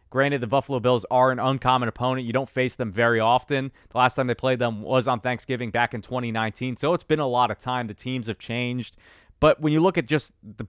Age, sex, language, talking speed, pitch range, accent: 20-39, male, English, 245 wpm, 115-135 Hz, American